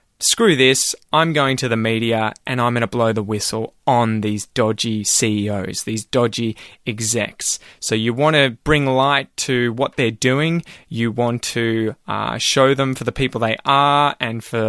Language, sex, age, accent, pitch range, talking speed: English, male, 20-39, Australian, 115-140 Hz, 180 wpm